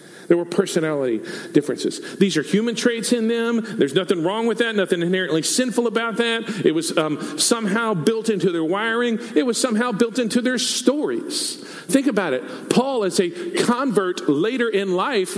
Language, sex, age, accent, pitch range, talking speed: English, male, 40-59, American, 190-260 Hz, 175 wpm